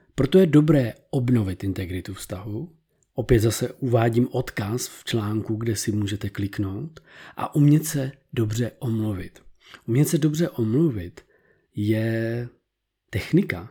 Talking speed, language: 120 wpm, Czech